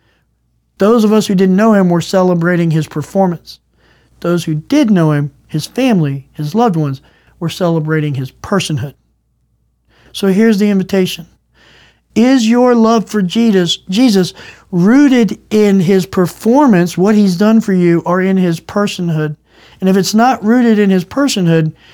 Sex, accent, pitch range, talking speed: male, American, 170-220 Hz, 155 wpm